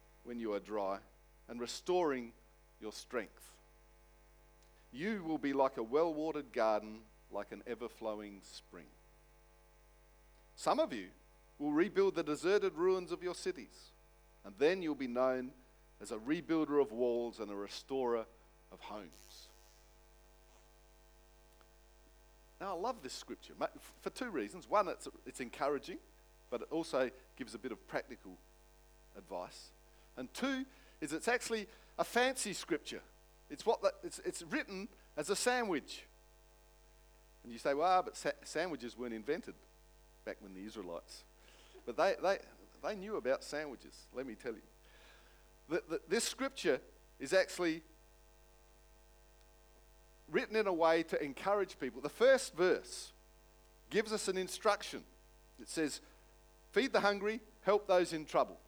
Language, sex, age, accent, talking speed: English, male, 50-69, Australian, 135 wpm